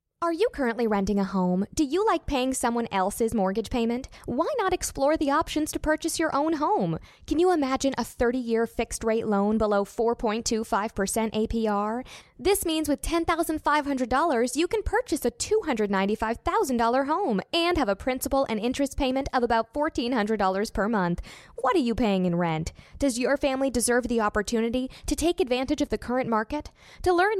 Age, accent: 10-29, American